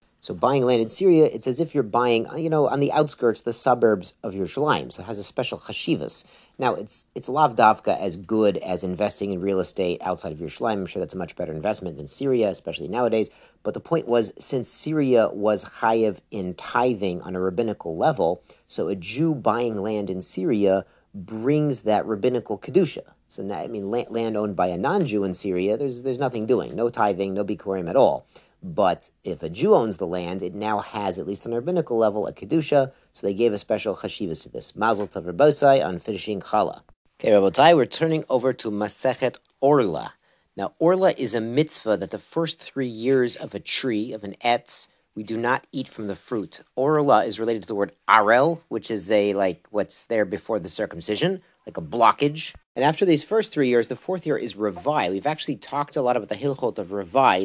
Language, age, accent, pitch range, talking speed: English, 40-59, American, 100-135 Hz, 210 wpm